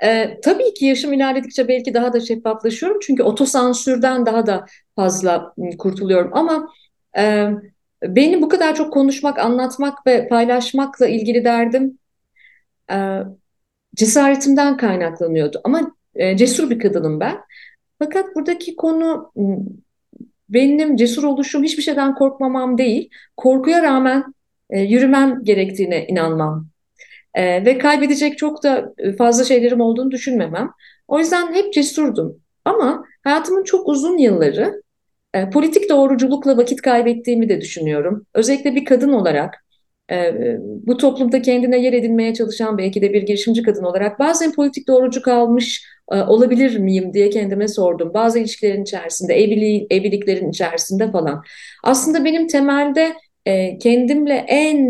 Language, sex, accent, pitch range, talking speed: Turkish, female, native, 205-280 Hz, 125 wpm